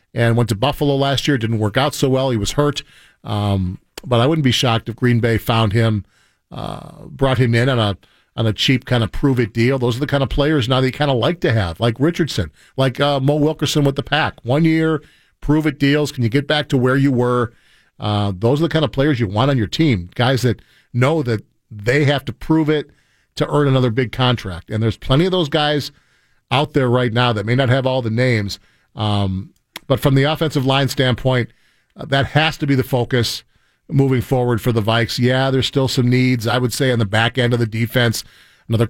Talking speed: 230 wpm